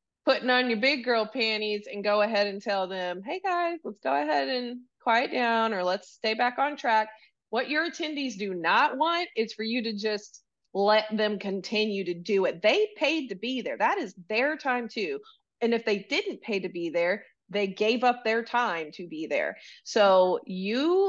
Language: English